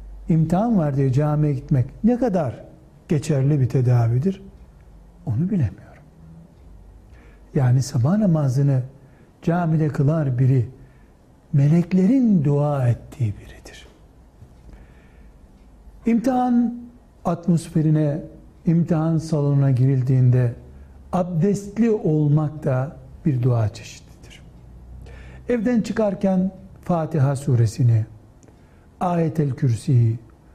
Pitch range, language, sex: 110-160 Hz, Turkish, male